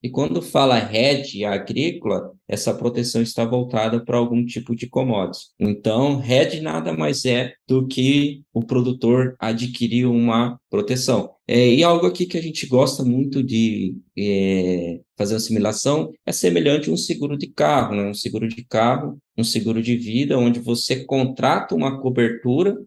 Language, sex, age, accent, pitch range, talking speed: Portuguese, male, 20-39, Brazilian, 115-135 Hz, 150 wpm